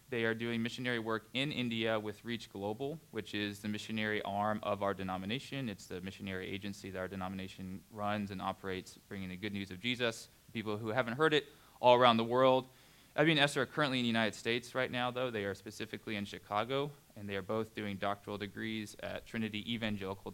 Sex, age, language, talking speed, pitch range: male, 20-39, English, 205 wpm, 100-125 Hz